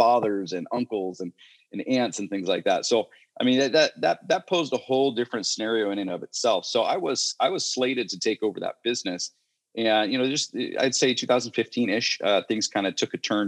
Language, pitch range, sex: English, 95-120 Hz, male